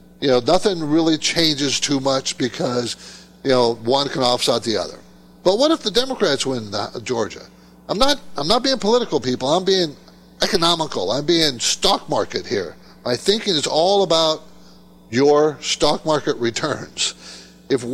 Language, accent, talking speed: English, American, 155 wpm